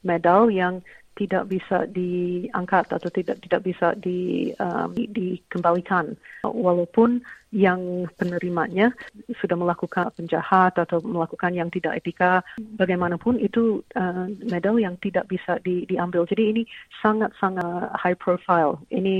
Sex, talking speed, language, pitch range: female, 120 wpm, Indonesian, 175-200 Hz